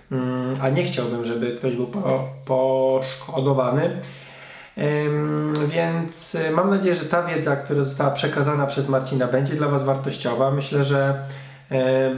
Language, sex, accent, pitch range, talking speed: Polish, male, native, 135-155 Hz, 135 wpm